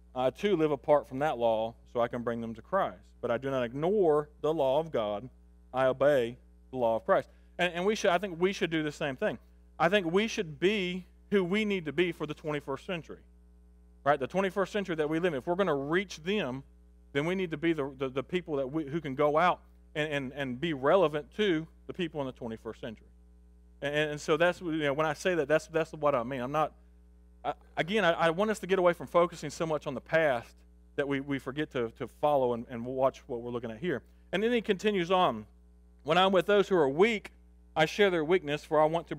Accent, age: American, 40-59